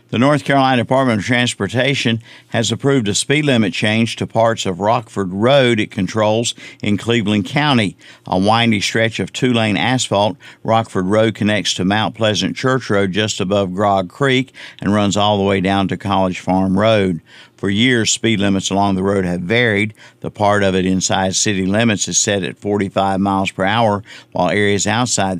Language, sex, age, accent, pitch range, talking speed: English, male, 50-69, American, 95-115 Hz, 180 wpm